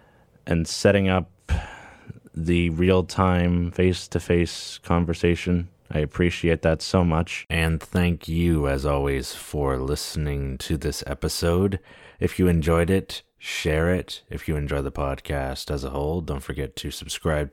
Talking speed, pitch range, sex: 135 wpm, 75-85 Hz, male